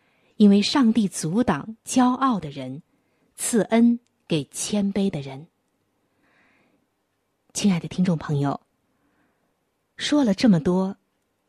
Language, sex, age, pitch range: Chinese, female, 20-39, 165-230 Hz